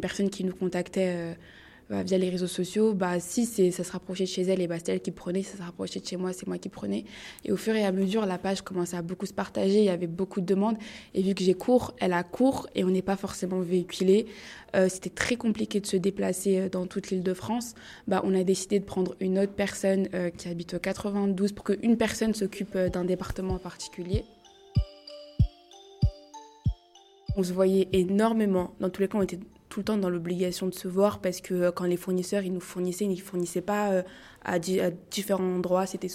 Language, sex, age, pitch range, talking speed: French, female, 20-39, 180-200 Hz, 235 wpm